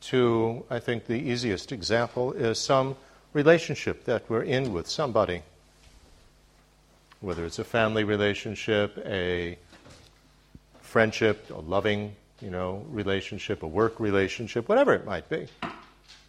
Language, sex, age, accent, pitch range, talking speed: English, male, 50-69, American, 95-120 Hz, 115 wpm